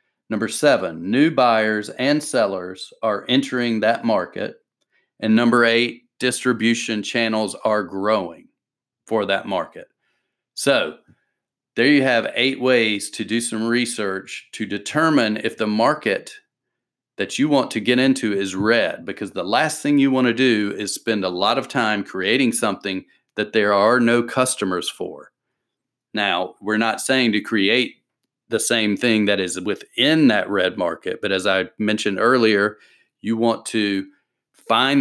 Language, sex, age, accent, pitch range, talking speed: English, male, 40-59, American, 105-120 Hz, 155 wpm